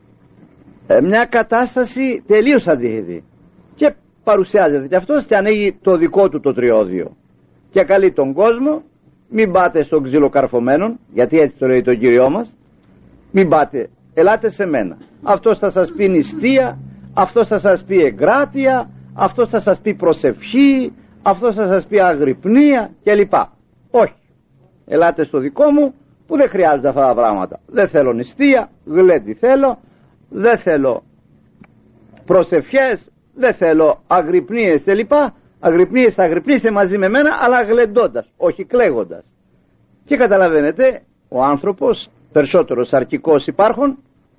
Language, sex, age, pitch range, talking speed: Greek, male, 50-69, 160-255 Hz, 130 wpm